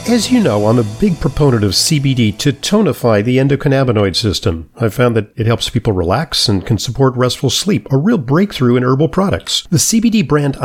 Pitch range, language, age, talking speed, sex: 115-155 Hz, English, 50-69, 195 wpm, male